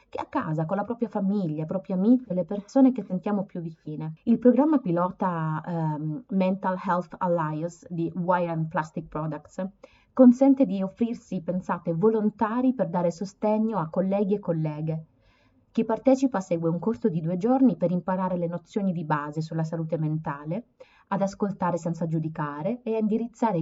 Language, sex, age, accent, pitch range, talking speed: Italian, female, 30-49, native, 165-200 Hz, 160 wpm